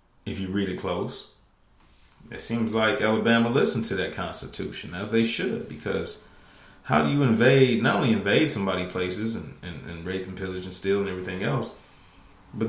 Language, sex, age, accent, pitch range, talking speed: English, male, 30-49, American, 95-115 Hz, 180 wpm